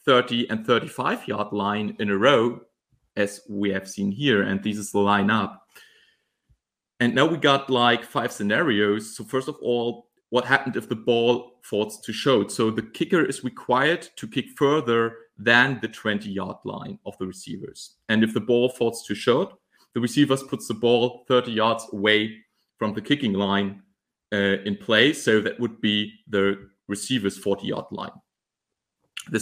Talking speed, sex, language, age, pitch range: 165 wpm, male, English, 30-49, 105-135 Hz